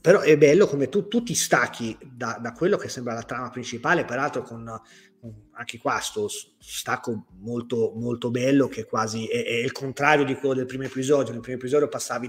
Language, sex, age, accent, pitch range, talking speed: Italian, male, 30-49, native, 120-140 Hz, 205 wpm